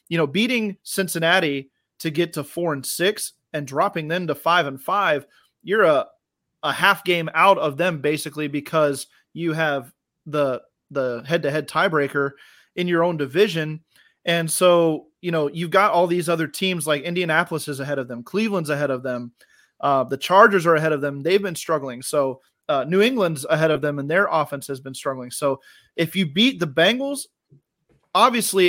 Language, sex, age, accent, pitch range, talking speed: English, male, 30-49, American, 145-175 Hz, 180 wpm